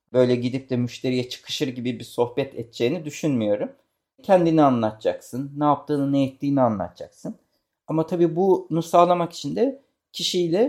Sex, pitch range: male, 125-170 Hz